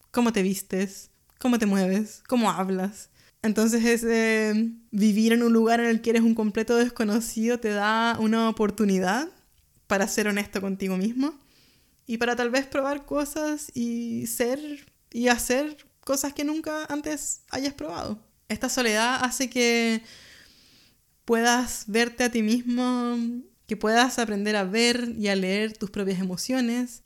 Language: Spanish